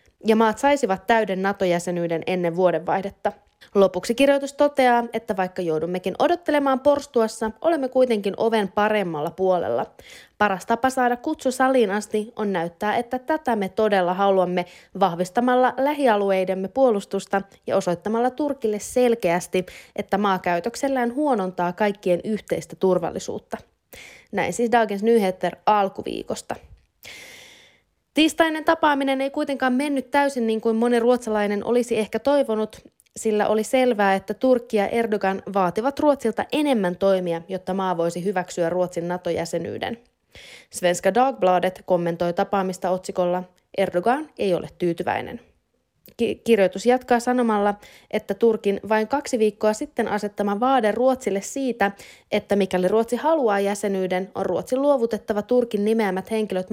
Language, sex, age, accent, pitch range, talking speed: Finnish, female, 20-39, native, 190-245 Hz, 120 wpm